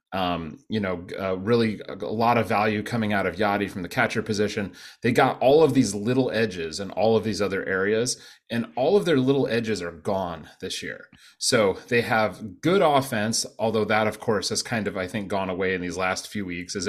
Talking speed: 225 wpm